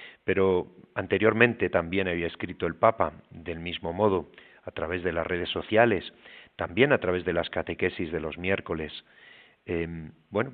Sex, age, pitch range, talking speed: male, 40-59, 85-105 Hz, 155 wpm